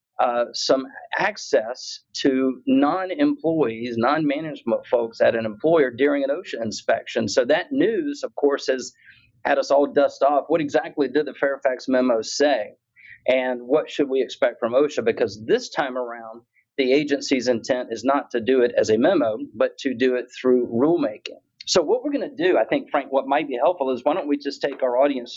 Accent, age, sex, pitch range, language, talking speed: American, 40-59, male, 120-145 Hz, English, 190 wpm